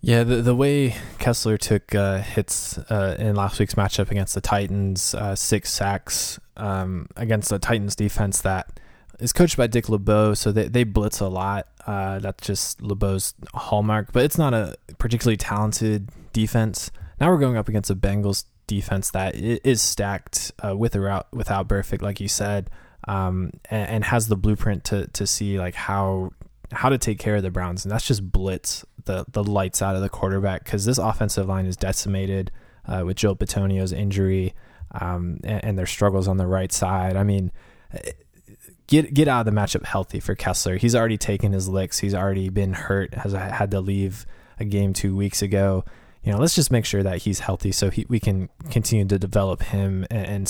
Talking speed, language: 195 wpm, English